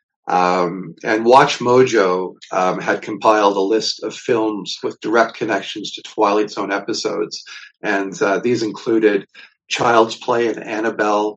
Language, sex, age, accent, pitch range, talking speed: English, male, 50-69, American, 105-125 Hz, 135 wpm